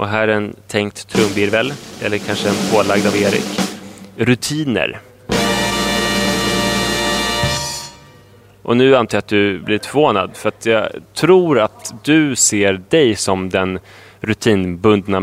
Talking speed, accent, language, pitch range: 125 wpm, Swedish, English, 100-115 Hz